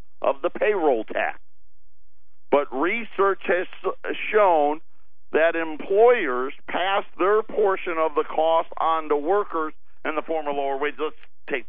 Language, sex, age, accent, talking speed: English, male, 50-69, American, 140 wpm